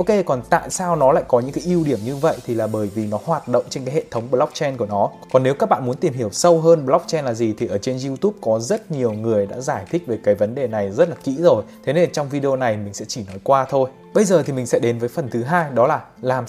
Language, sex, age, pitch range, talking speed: Vietnamese, male, 20-39, 115-155 Hz, 300 wpm